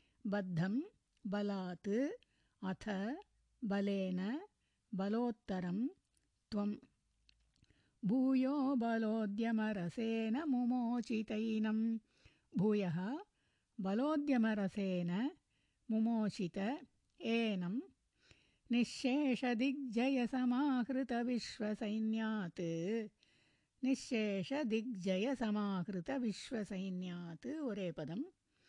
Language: Tamil